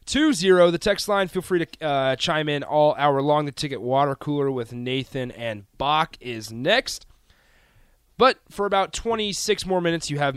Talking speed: 180 wpm